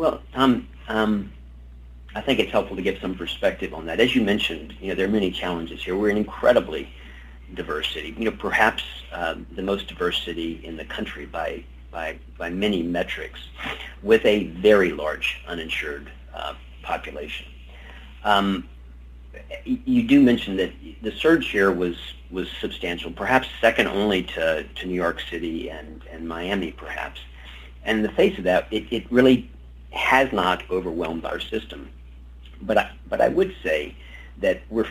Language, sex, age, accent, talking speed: English, male, 50-69, American, 170 wpm